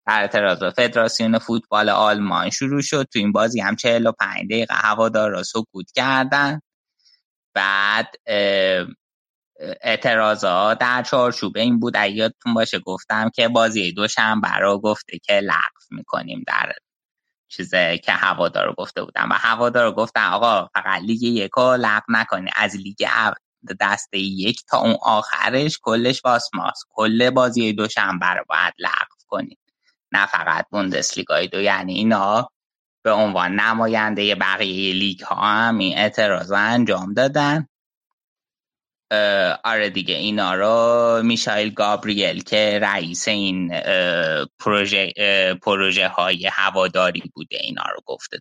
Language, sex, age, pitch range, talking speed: Persian, male, 20-39, 100-115 Hz, 130 wpm